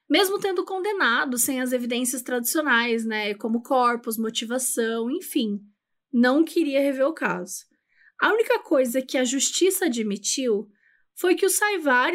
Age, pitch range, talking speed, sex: 20-39, 240-335 Hz, 140 wpm, female